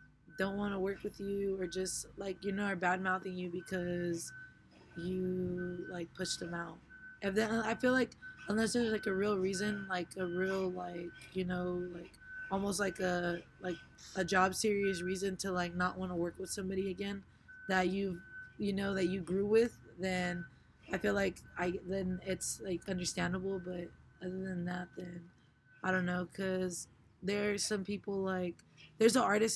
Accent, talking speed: American, 180 wpm